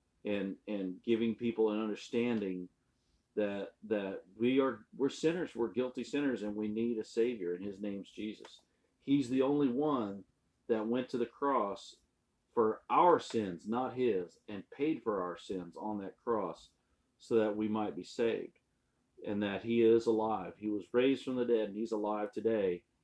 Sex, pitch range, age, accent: male, 105-125 Hz, 40-59, American